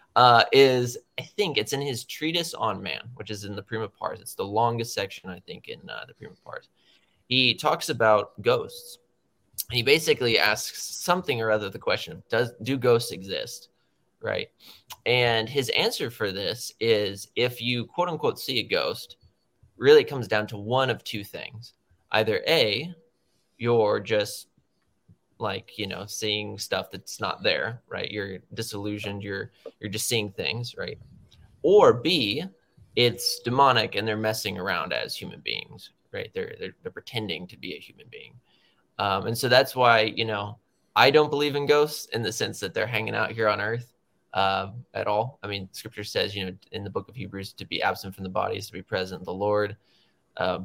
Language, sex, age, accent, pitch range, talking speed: English, male, 20-39, American, 105-145 Hz, 185 wpm